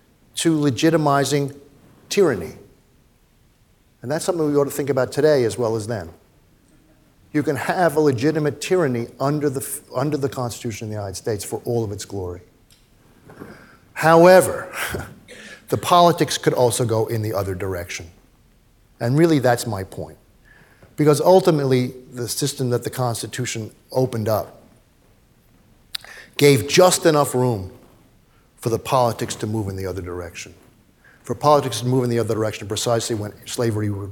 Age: 50-69